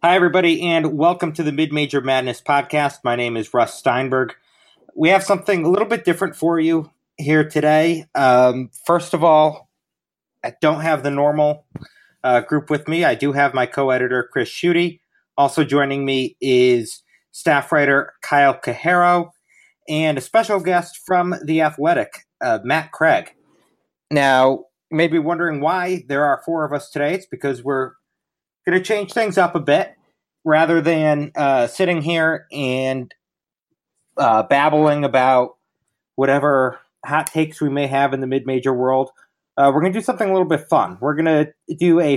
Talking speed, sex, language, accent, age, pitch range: 170 wpm, male, English, American, 30-49, 130-170 Hz